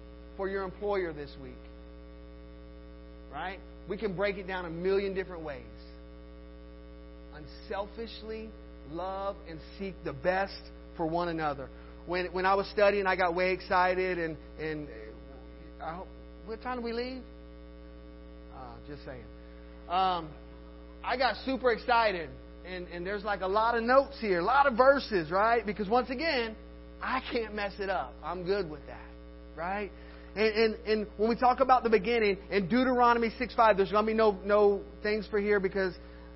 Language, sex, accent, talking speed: English, male, American, 165 wpm